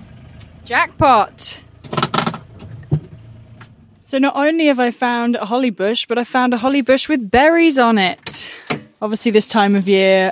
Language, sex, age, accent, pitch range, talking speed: English, female, 10-29, British, 180-215 Hz, 145 wpm